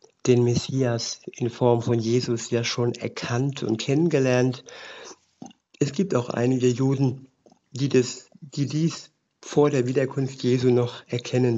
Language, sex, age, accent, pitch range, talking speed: German, male, 50-69, German, 120-135 Hz, 135 wpm